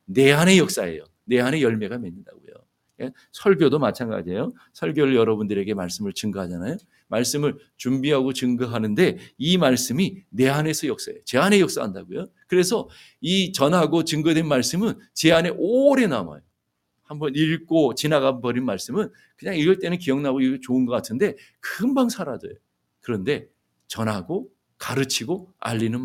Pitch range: 120-185 Hz